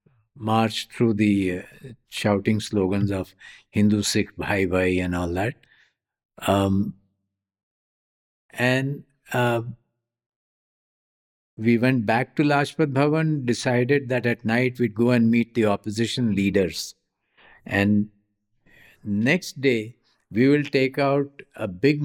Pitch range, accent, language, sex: 105-130 Hz, Indian, English, male